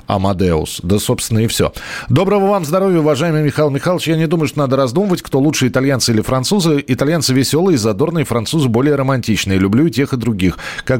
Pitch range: 110-145 Hz